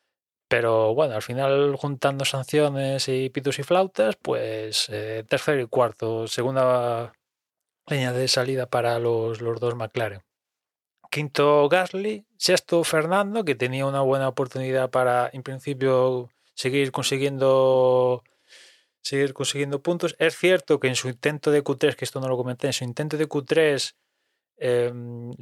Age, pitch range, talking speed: 20-39, 120-145 Hz, 140 wpm